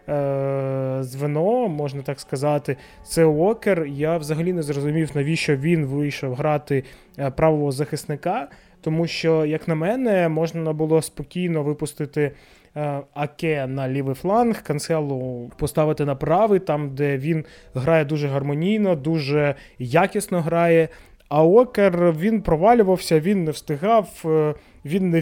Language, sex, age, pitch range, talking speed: Ukrainian, male, 20-39, 145-170 Hz, 120 wpm